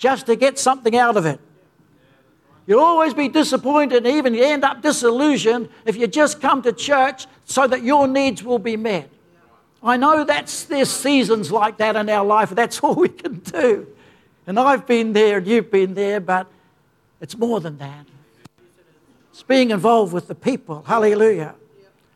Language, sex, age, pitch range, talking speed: English, male, 60-79, 195-265 Hz, 175 wpm